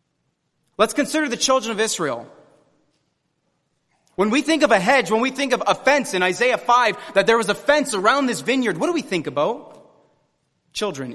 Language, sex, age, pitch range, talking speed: English, male, 30-49, 160-235 Hz, 190 wpm